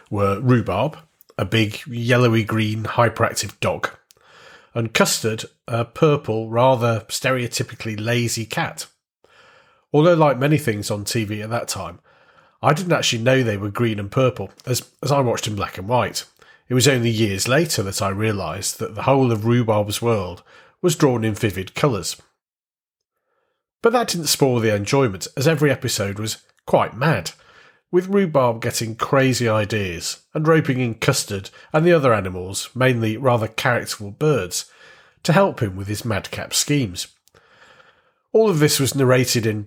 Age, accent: 40-59, British